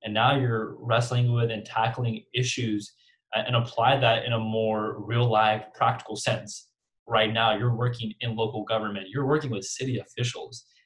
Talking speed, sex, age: 165 wpm, male, 20-39